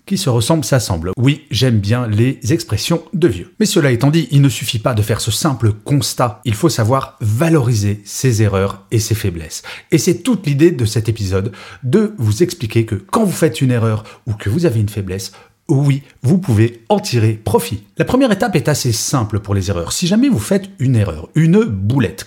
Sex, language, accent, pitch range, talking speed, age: male, French, French, 105-155 Hz, 205 wpm, 30-49